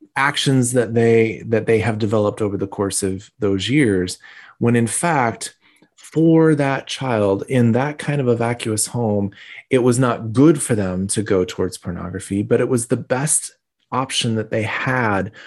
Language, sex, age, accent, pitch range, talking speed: English, male, 30-49, American, 105-125 Hz, 175 wpm